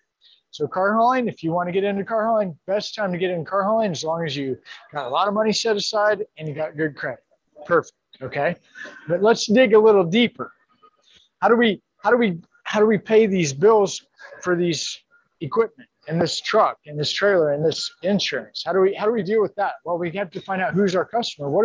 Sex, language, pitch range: male, English, 170-220 Hz